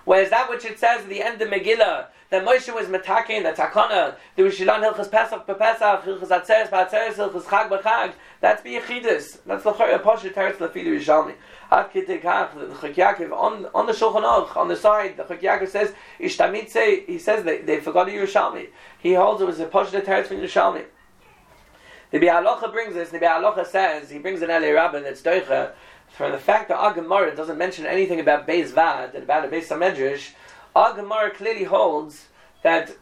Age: 40-59